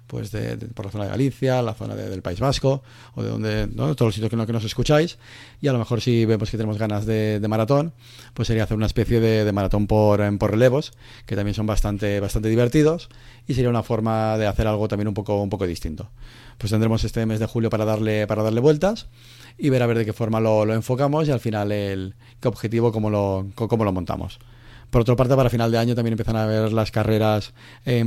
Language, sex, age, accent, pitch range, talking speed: Spanish, male, 30-49, Spanish, 110-120 Hz, 245 wpm